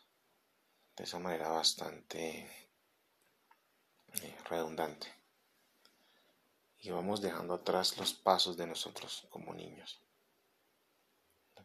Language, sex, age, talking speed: Spanish, male, 30-49, 80 wpm